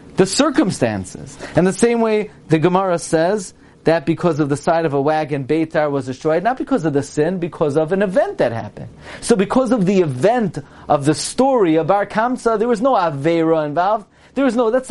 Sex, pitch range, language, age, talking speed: male, 140-215 Hz, English, 40-59, 205 wpm